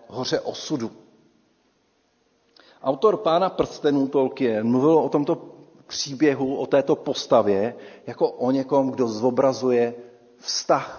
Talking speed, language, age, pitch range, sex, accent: 105 wpm, Czech, 50-69, 125-175 Hz, male, native